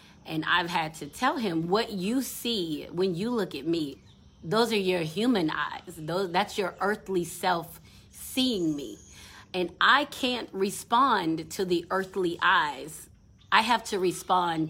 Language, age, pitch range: English, 30-49, 155-200 Hz